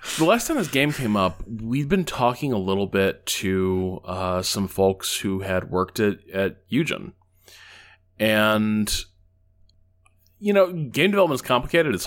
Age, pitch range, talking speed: 20-39, 95-140 Hz, 155 wpm